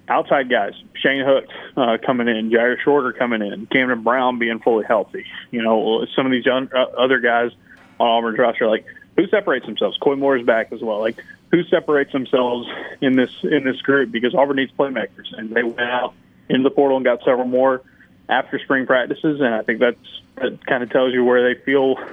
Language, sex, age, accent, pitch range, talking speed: English, male, 20-39, American, 120-135 Hz, 205 wpm